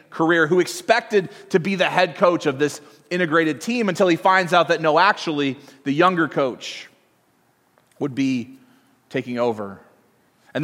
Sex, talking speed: male, 150 wpm